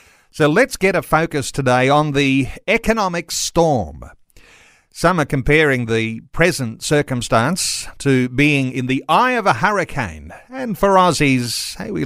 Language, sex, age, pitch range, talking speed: English, male, 50-69, 125-160 Hz, 140 wpm